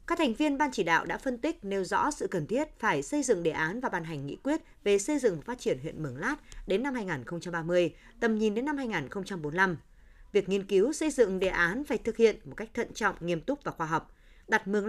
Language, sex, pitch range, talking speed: Vietnamese, female, 170-255 Hz, 250 wpm